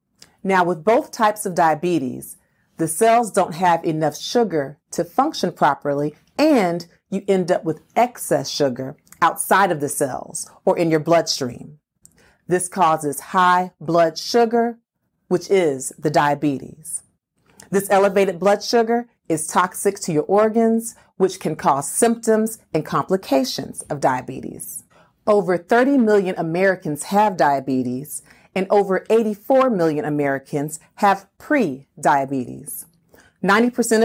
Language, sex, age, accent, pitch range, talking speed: English, female, 40-59, American, 155-205 Hz, 125 wpm